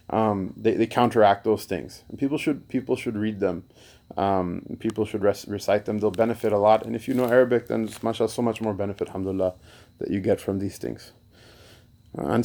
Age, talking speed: 30-49, 210 wpm